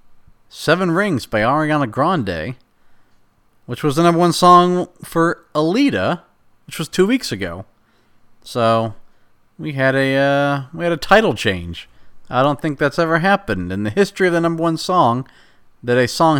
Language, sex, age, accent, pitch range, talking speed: English, male, 40-59, American, 100-140 Hz, 165 wpm